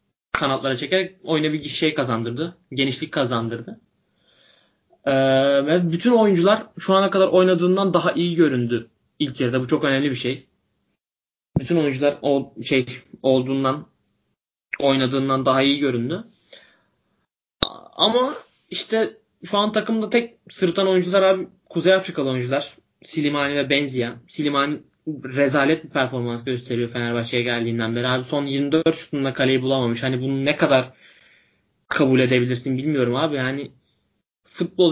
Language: Turkish